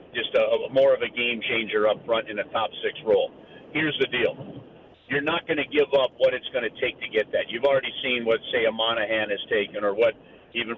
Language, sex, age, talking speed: English, male, 50-69, 240 wpm